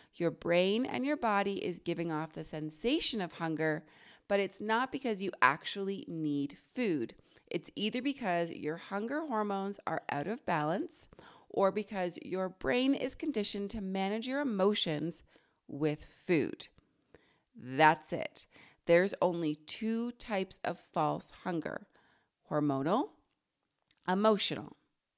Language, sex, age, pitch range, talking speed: English, female, 30-49, 160-220 Hz, 125 wpm